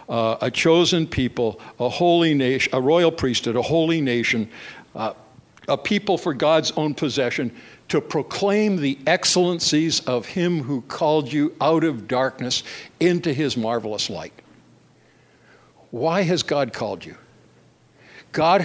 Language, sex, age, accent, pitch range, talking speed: English, male, 60-79, American, 125-160 Hz, 135 wpm